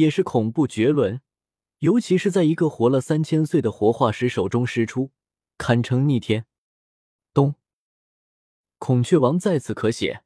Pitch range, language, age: 115-170 Hz, Chinese, 20-39